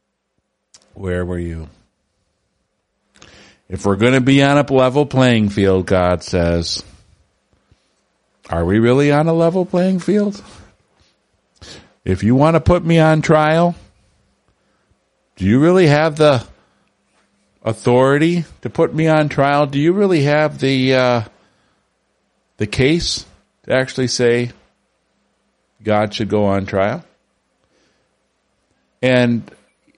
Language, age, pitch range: English, 50-69, 100-135 Hz